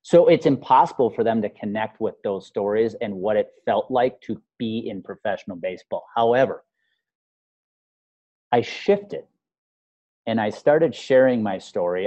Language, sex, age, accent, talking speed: English, male, 30-49, American, 145 wpm